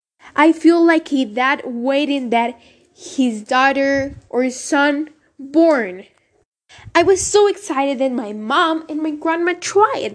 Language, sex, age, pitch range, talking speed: English, female, 10-29, 255-350 Hz, 140 wpm